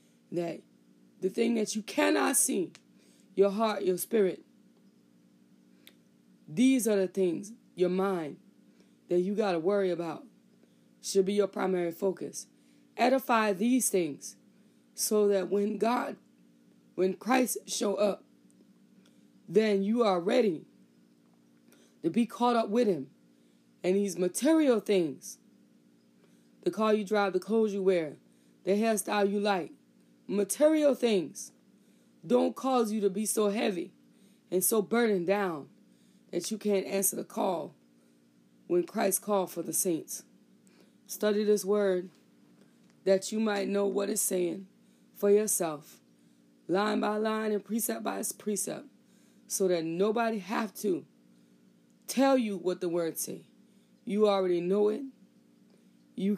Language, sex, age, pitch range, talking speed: English, female, 20-39, 165-215 Hz, 135 wpm